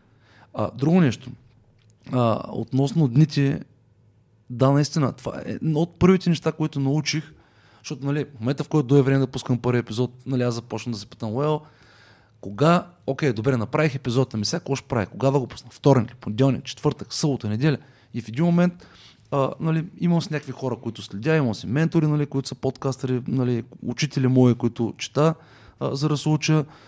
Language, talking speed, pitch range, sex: Bulgarian, 175 wpm, 115-145 Hz, male